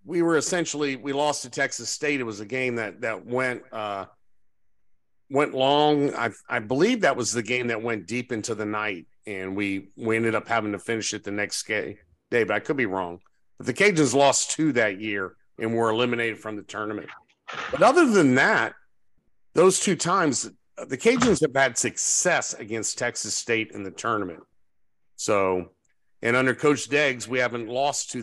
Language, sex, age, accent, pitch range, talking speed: English, male, 50-69, American, 110-140 Hz, 195 wpm